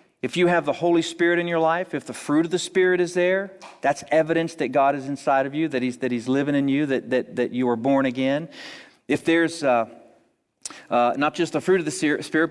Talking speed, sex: 240 wpm, male